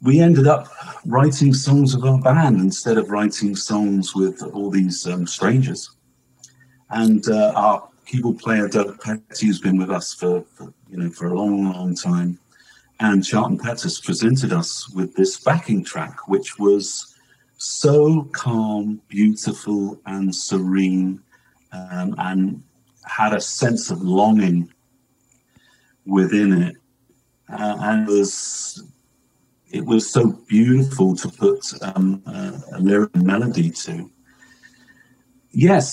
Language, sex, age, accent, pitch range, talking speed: English, male, 50-69, British, 95-130 Hz, 130 wpm